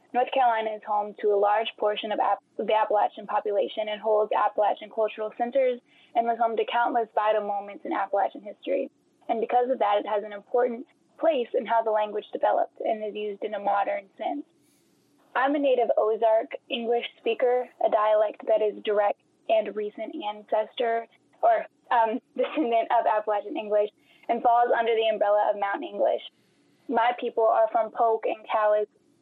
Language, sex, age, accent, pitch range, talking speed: English, female, 10-29, American, 210-255 Hz, 170 wpm